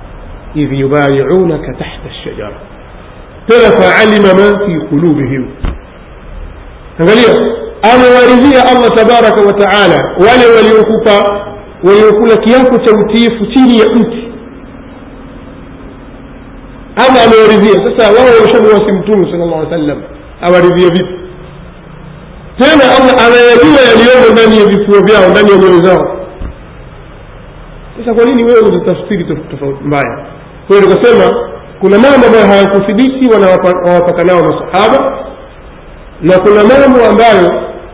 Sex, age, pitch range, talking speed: male, 50-69, 170-225 Hz, 90 wpm